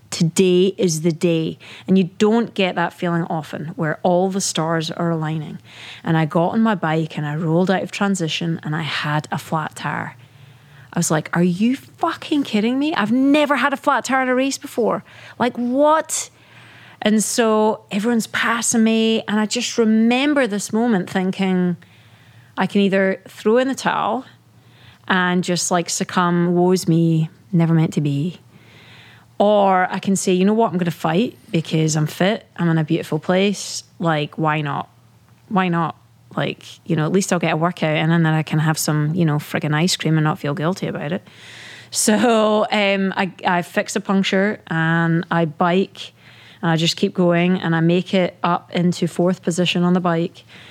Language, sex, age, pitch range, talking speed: English, female, 30-49, 160-205 Hz, 190 wpm